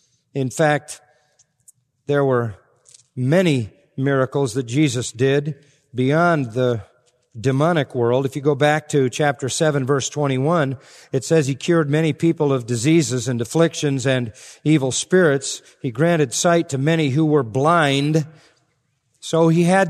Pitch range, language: 140-175 Hz, English